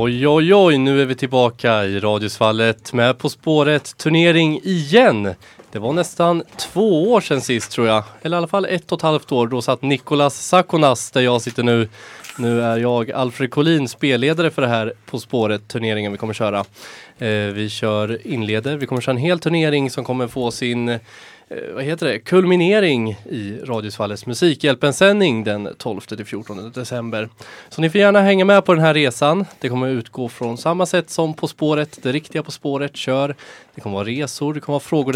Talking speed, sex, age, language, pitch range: 200 wpm, male, 20-39, Swedish, 120-165 Hz